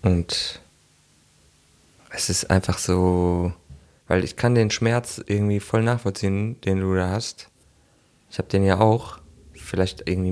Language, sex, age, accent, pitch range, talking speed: German, male, 20-39, German, 95-115 Hz, 140 wpm